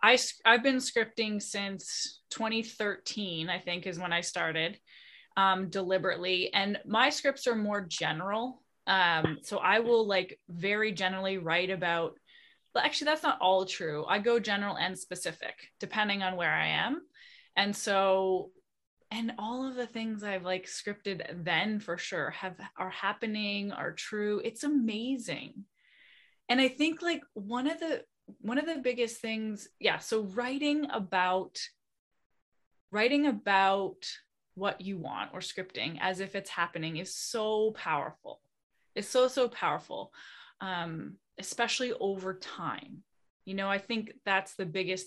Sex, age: female, 20-39